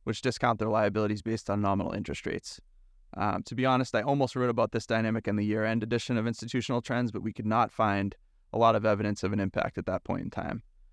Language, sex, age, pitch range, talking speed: English, male, 20-39, 105-125 Hz, 235 wpm